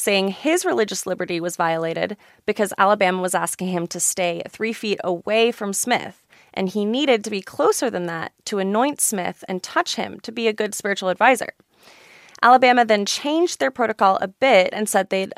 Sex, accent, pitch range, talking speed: female, American, 185-235 Hz, 185 wpm